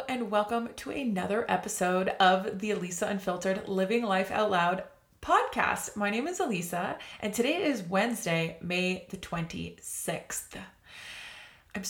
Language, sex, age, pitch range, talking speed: English, female, 20-39, 185-220 Hz, 130 wpm